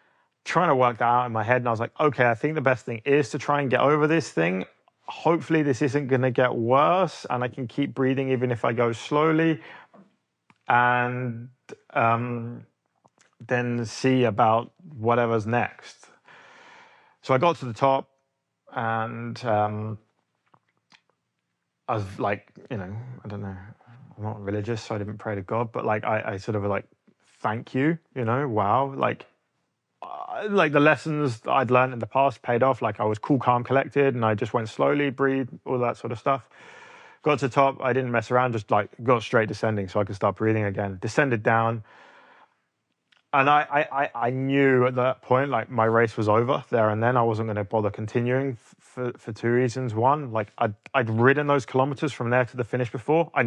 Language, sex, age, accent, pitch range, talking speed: English, male, 30-49, British, 115-135 Hz, 200 wpm